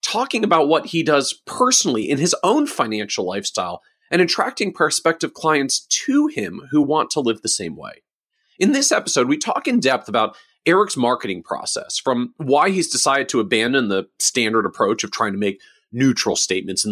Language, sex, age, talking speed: English, male, 40-59, 180 wpm